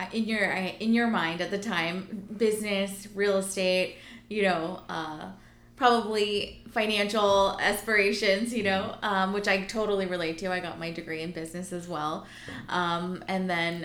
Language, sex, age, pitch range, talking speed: English, female, 20-39, 170-205 Hz, 155 wpm